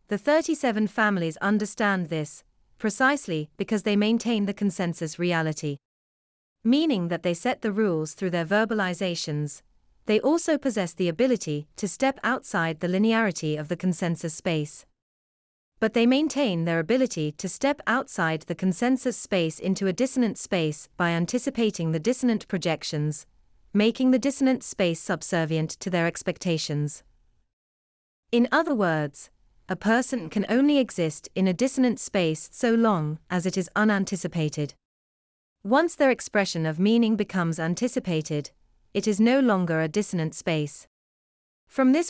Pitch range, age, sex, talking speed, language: 160-230 Hz, 30-49, female, 140 wpm, English